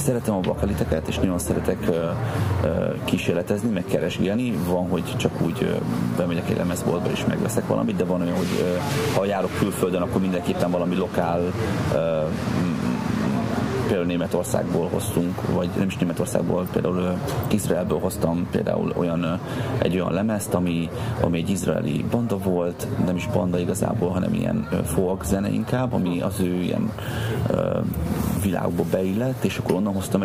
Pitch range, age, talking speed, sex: 90-100 Hz, 30-49, 155 wpm, male